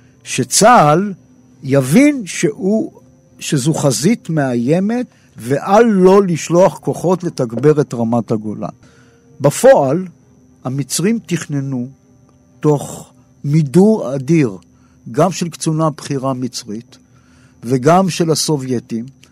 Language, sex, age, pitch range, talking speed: Hebrew, male, 60-79, 130-175 Hz, 85 wpm